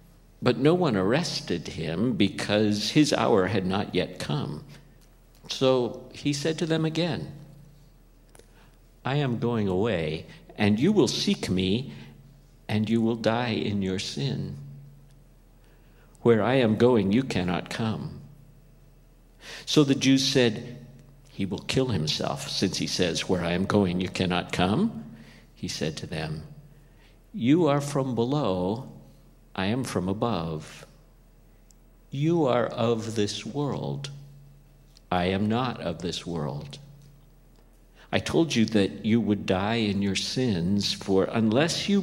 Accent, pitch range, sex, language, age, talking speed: American, 105-140 Hz, male, English, 50-69, 135 wpm